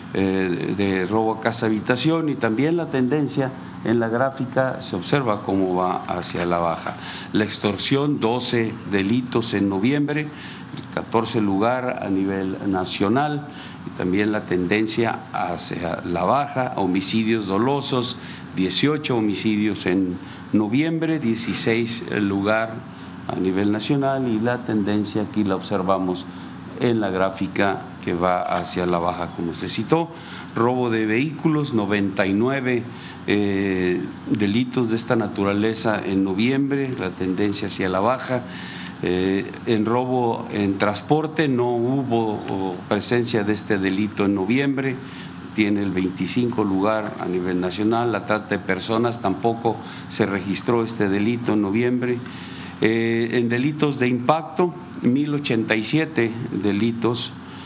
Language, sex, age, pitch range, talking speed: Spanish, male, 50-69, 95-125 Hz, 125 wpm